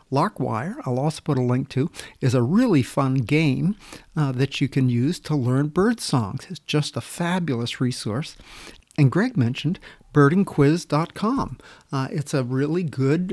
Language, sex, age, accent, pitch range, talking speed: English, male, 50-69, American, 130-160 Hz, 160 wpm